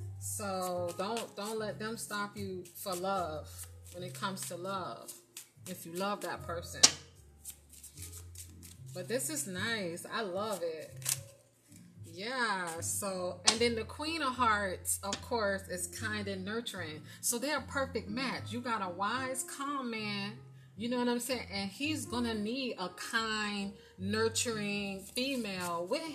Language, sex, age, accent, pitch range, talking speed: English, female, 30-49, American, 170-255 Hz, 150 wpm